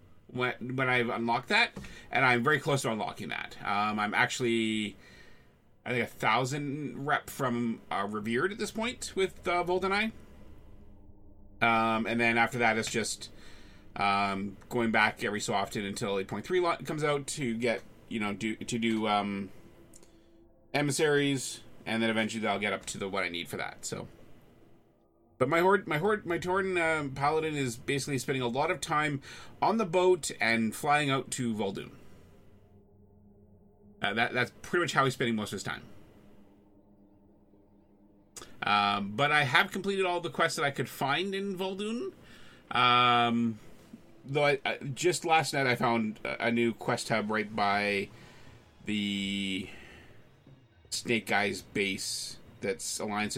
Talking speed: 160 wpm